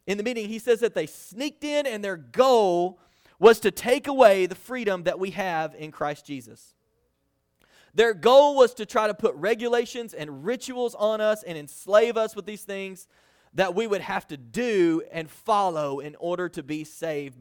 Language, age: English, 30-49